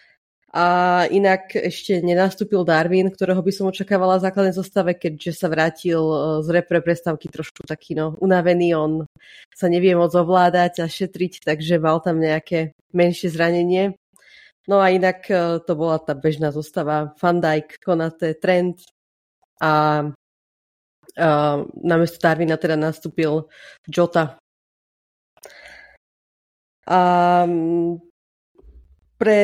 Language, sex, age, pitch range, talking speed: Slovak, female, 30-49, 165-195 Hz, 115 wpm